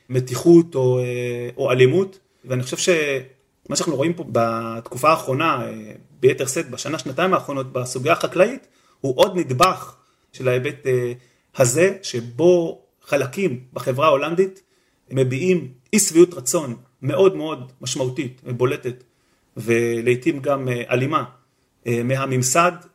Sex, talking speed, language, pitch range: male, 105 wpm, Hebrew, 125-170 Hz